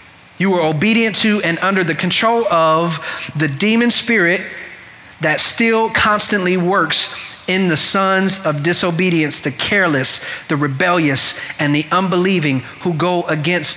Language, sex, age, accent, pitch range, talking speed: English, male, 30-49, American, 170-225 Hz, 135 wpm